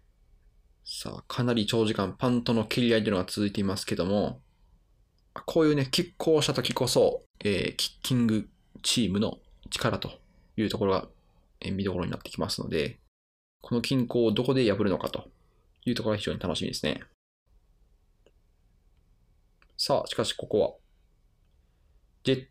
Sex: male